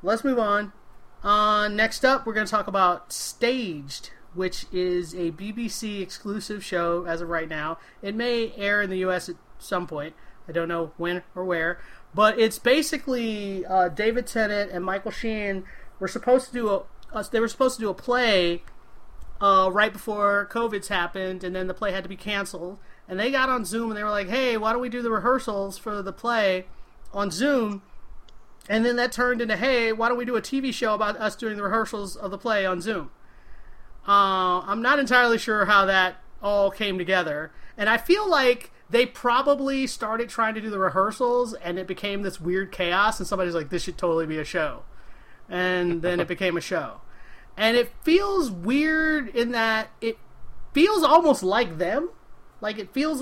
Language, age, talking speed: English, 30-49, 195 wpm